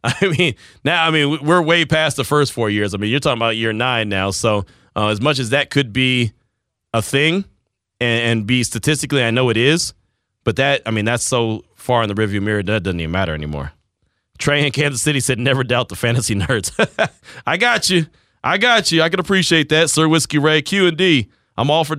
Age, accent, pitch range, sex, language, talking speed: 30-49, American, 110-140 Hz, male, English, 225 wpm